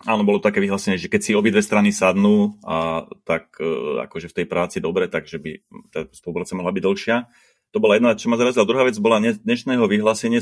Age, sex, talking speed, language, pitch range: 30-49, male, 215 wpm, Slovak, 90-110 Hz